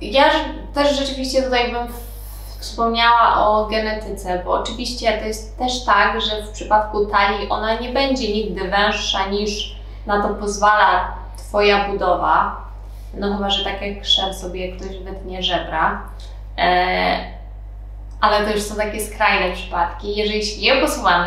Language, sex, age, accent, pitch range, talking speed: Polish, female, 20-39, native, 195-220 Hz, 140 wpm